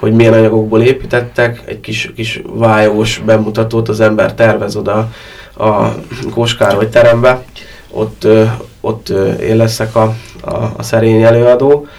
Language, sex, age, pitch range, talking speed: Hungarian, male, 20-39, 105-115 Hz, 130 wpm